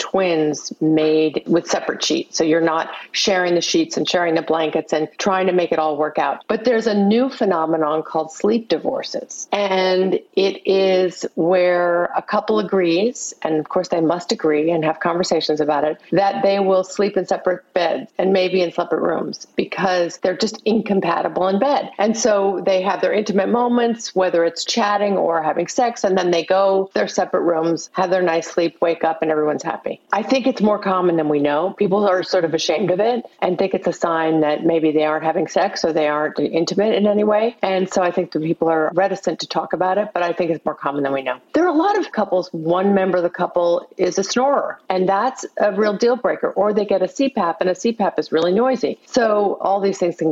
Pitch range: 165-200 Hz